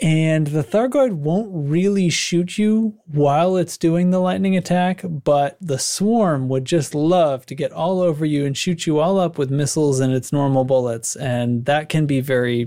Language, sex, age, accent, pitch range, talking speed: English, male, 30-49, American, 135-170 Hz, 190 wpm